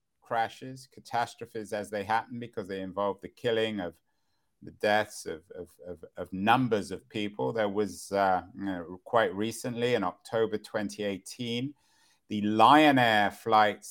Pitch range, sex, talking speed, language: 105-125 Hz, male, 145 wpm, English